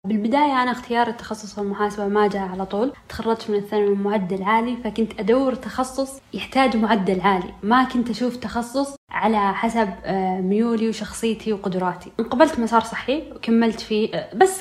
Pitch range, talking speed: 205-250 Hz, 150 wpm